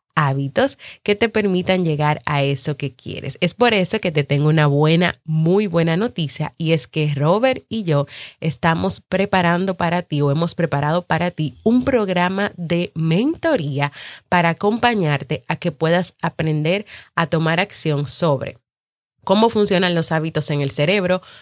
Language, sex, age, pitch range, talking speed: Spanish, female, 30-49, 150-185 Hz, 155 wpm